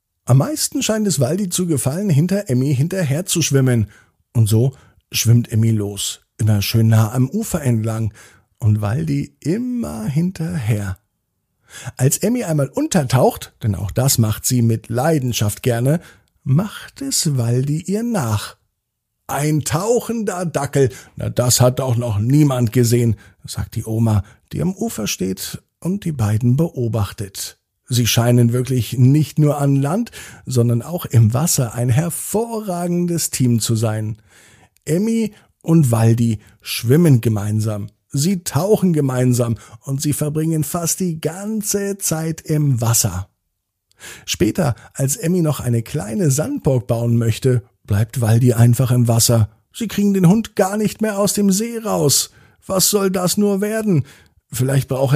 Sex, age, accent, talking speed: male, 50-69, German, 140 wpm